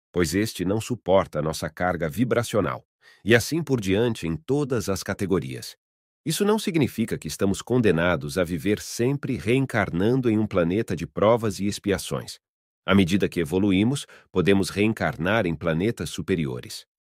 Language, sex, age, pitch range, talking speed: English, male, 40-59, 85-110 Hz, 145 wpm